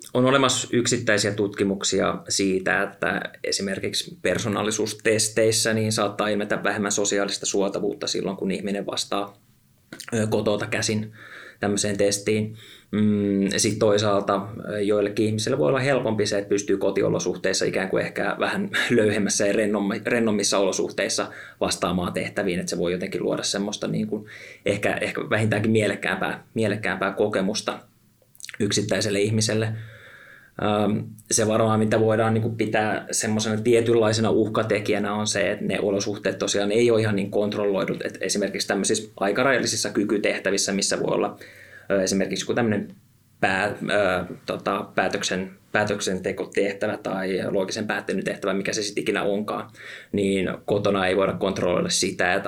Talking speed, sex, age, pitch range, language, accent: 120 wpm, male, 20-39, 100-110 Hz, Finnish, native